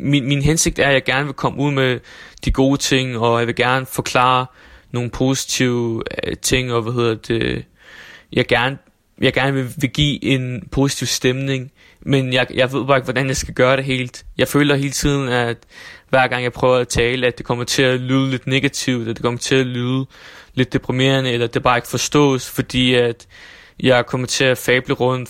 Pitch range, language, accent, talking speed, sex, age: 120-135 Hz, Danish, native, 210 wpm, male, 20-39